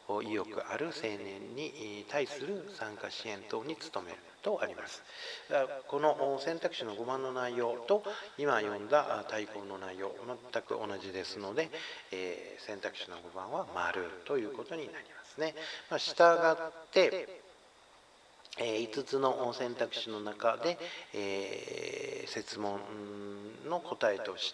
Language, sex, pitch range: Japanese, male, 105-175 Hz